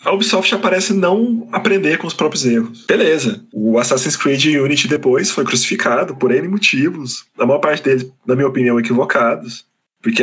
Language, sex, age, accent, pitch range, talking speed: Portuguese, male, 20-39, Brazilian, 130-205 Hz, 170 wpm